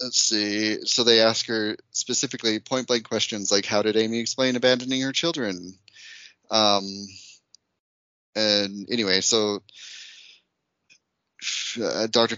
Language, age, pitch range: English, 30-49, 100-115 Hz